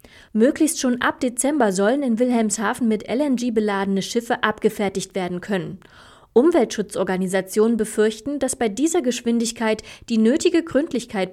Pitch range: 200-245 Hz